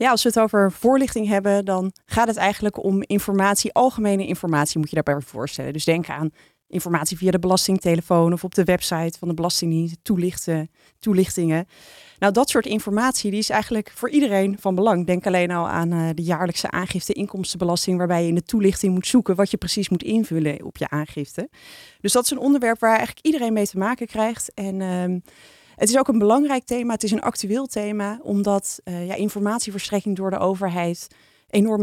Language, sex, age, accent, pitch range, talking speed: Dutch, female, 20-39, Dutch, 180-220 Hz, 190 wpm